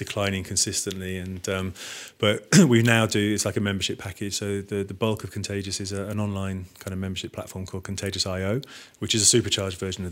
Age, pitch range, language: 30-49, 95-105 Hz, English